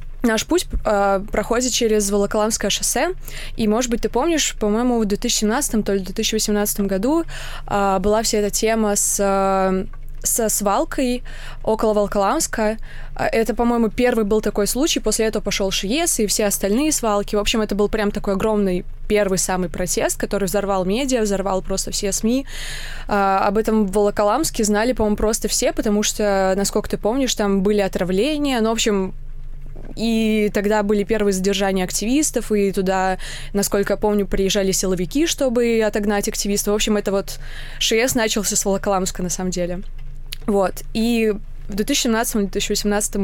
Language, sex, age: Russian, female, 20-39